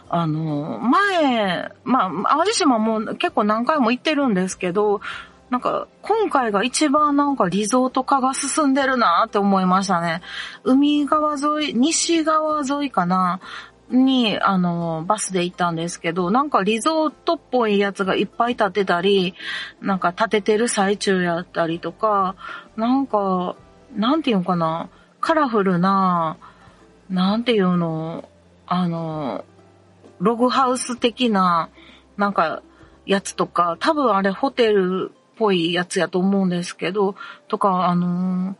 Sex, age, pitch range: female, 40-59, 180-250 Hz